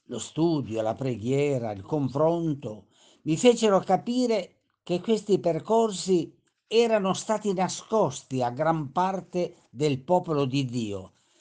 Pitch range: 140-195 Hz